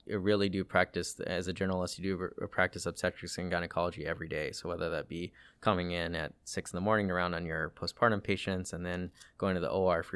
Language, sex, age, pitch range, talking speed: English, male, 20-39, 90-95 Hz, 230 wpm